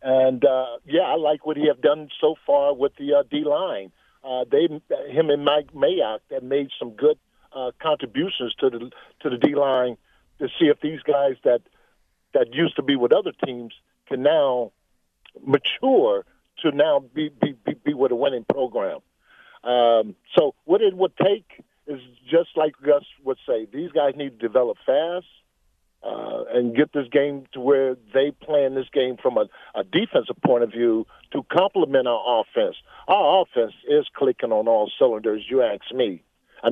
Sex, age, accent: male, 50-69, American